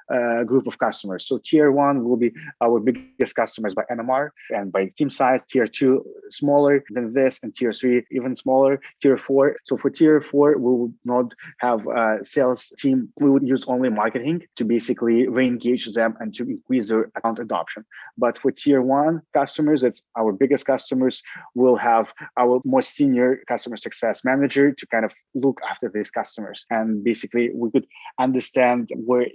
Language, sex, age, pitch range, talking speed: English, male, 20-39, 120-140 Hz, 180 wpm